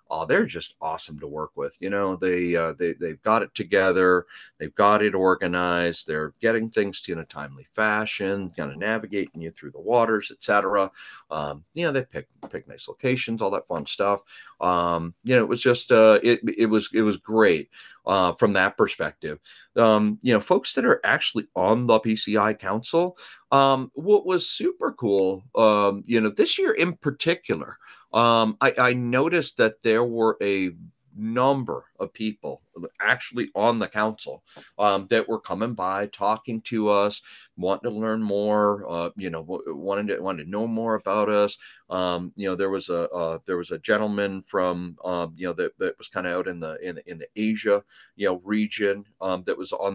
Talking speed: 200 wpm